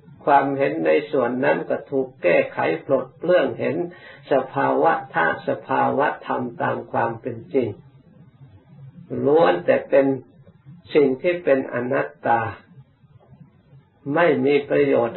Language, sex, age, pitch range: Thai, male, 60-79, 130-145 Hz